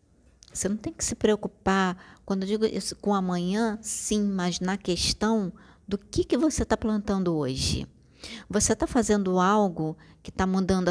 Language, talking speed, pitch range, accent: Portuguese, 165 wpm, 160-210 Hz, Brazilian